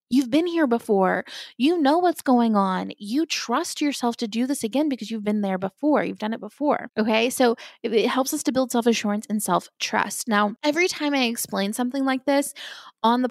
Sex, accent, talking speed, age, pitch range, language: female, American, 210 wpm, 20-39, 215-280 Hz, English